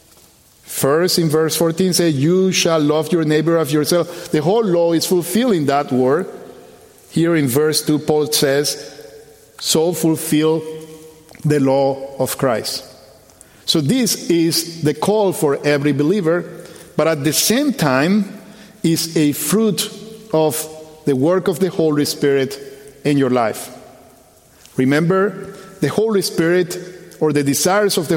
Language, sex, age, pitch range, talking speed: English, male, 50-69, 145-185 Hz, 145 wpm